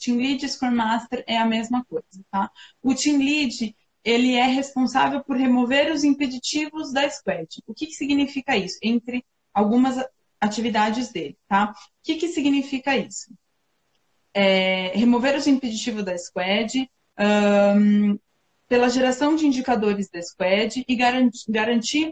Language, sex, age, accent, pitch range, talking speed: Portuguese, female, 20-39, Brazilian, 220-275 Hz, 145 wpm